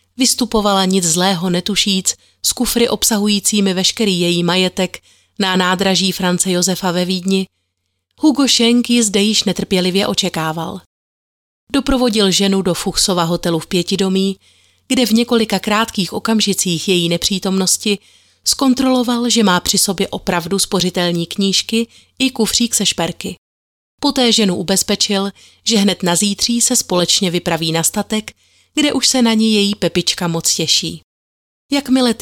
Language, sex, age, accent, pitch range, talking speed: Czech, female, 30-49, native, 180-220 Hz, 130 wpm